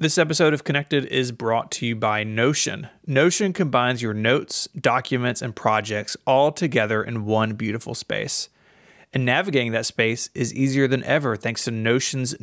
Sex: male